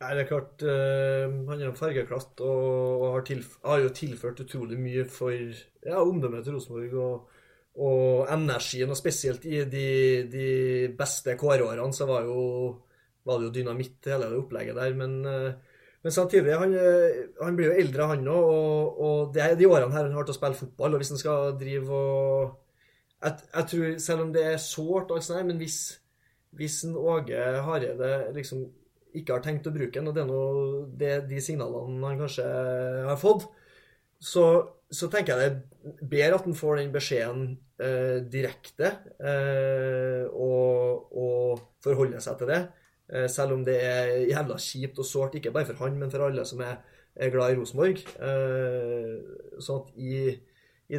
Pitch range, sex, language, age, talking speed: 125-150 Hz, male, English, 20-39, 185 wpm